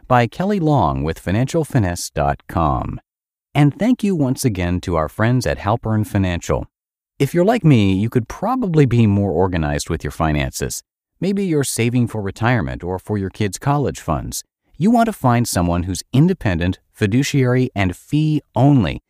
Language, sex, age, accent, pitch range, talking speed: English, male, 40-59, American, 90-140 Hz, 160 wpm